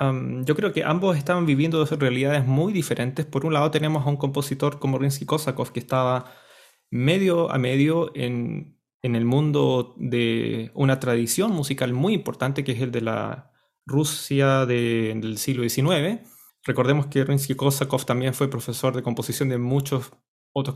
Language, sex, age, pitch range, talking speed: Spanish, male, 20-39, 125-145 Hz, 170 wpm